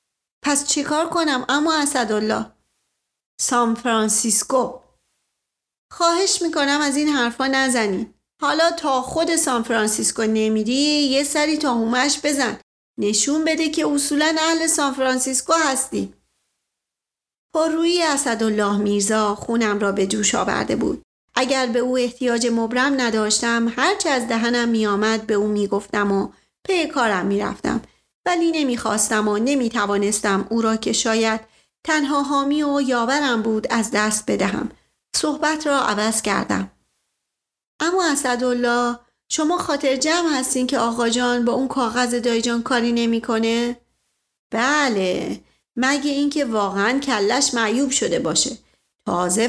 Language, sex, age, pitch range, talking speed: Persian, female, 40-59, 225-285 Hz, 130 wpm